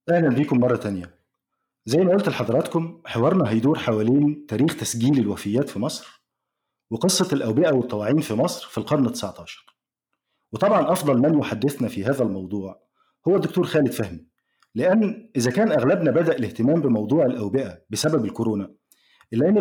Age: 50-69